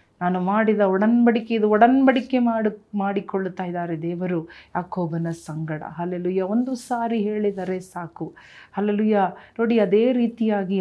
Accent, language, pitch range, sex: native, Kannada, 180-215 Hz, female